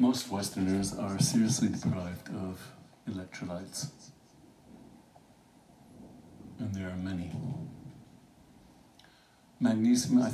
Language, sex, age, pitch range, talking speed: English, male, 60-79, 95-120 Hz, 75 wpm